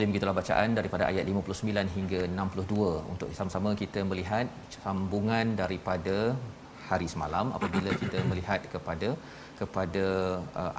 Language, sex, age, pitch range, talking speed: Malayalam, male, 40-59, 95-115 Hz, 115 wpm